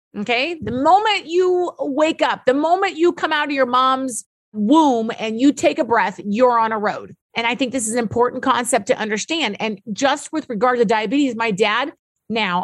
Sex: female